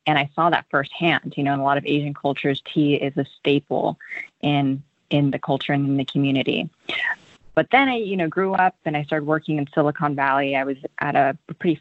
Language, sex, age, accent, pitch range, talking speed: English, female, 20-39, American, 140-165 Hz, 225 wpm